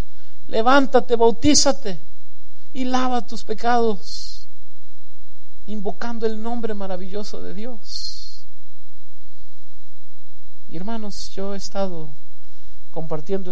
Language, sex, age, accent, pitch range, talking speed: Spanish, male, 50-69, Mexican, 140-210 Hz, 75 wpm